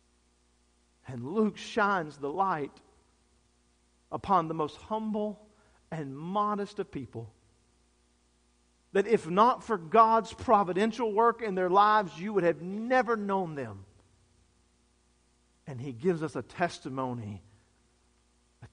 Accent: American